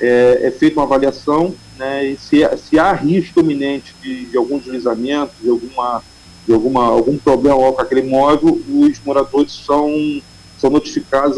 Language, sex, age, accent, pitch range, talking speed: Portuguese, male, 40-59, Brazilian, 135-175 Hz, 170 wpm